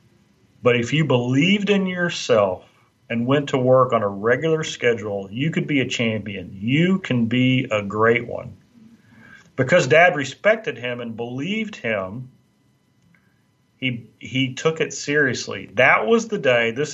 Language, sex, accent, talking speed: English, male, American, 150 wpm